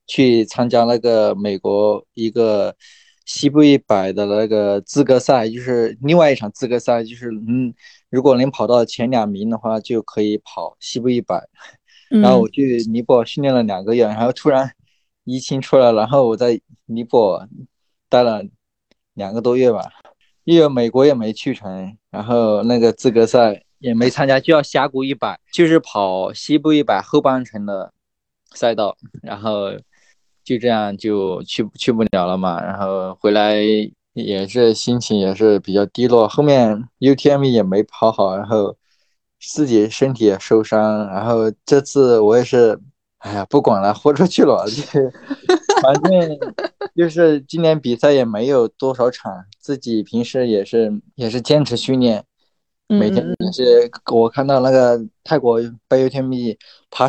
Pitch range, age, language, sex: 110-140 Hz, 20-39, Chinese, male